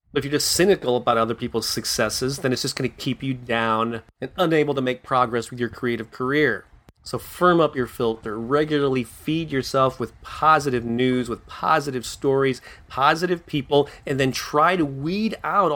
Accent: American